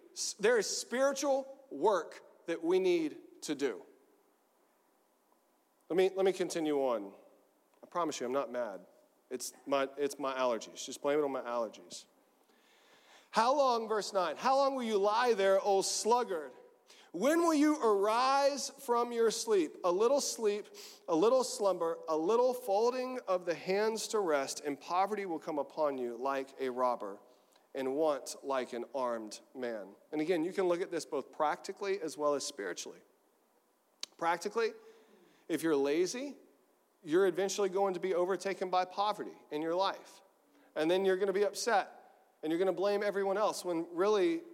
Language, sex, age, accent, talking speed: English, male, 40-59, American, 165 wpm